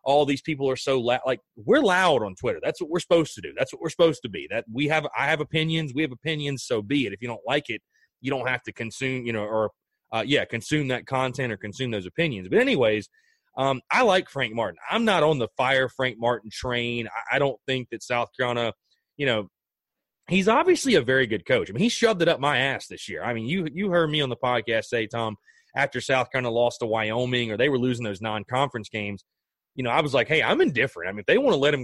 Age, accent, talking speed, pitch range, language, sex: 30-49, American, 260 wpm, 120-165 Hz, English, male